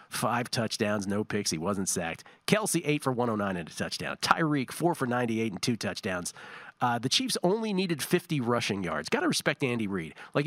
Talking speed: 195 wpm